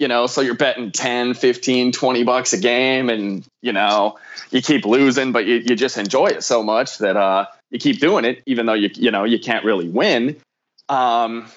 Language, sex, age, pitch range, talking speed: English, male, 20-39, 110-135 Hz, 215 wpm